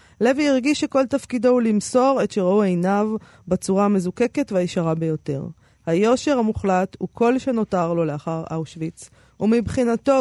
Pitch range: 165-220 Hz